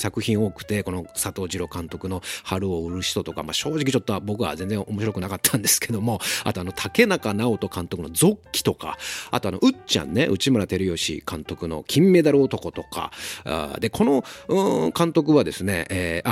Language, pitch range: Japanese, 95-140 Hz